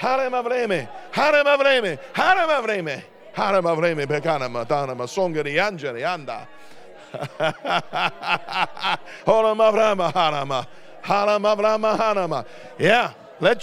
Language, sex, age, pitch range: English, male, 50-69, 175-255 Hz